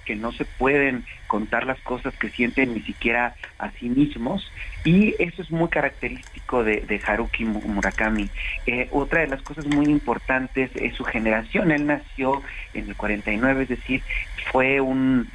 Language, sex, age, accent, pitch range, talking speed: Spanish, male, 40-59, Mexican, 110-135 Hz, 160 wpm